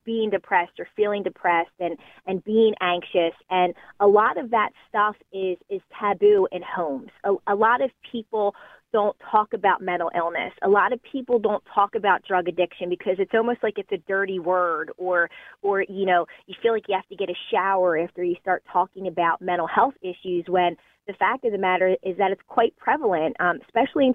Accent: American